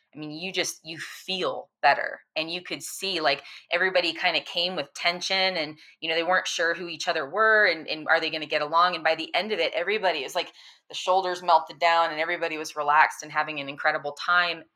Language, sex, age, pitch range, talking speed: English, female, 20-39, 145-170 Hz, 240 wpm